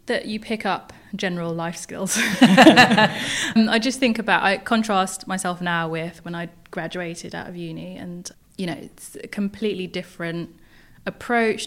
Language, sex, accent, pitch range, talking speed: English, female, British, 175-215 Hz, 160 wpm